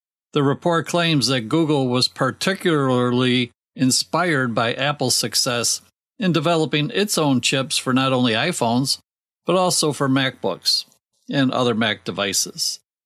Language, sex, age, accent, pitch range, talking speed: English, male, 50-69, American, 130-155 Hz, 130 wpm